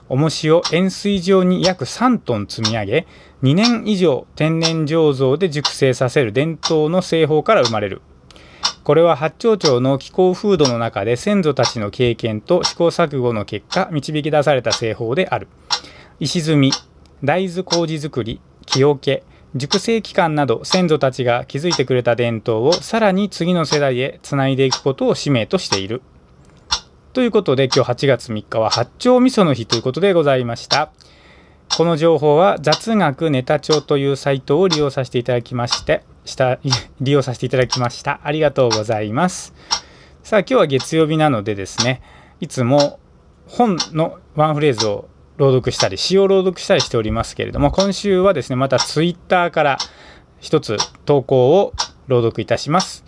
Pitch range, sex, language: 125-170 Hz, male, Japanese